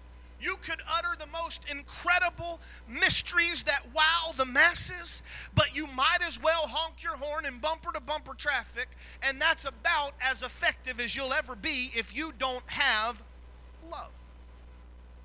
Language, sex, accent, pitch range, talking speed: English, male, American, 230-320 Hz, 140 wpm